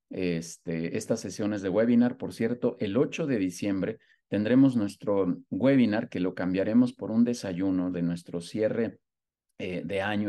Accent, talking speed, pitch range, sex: Mexican, 145 wpm, 90-140 Hz, male